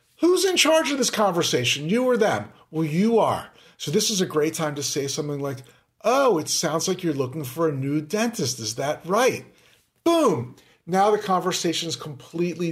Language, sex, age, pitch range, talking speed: English, male, 40-59, 145-180 Hz, 195 wpm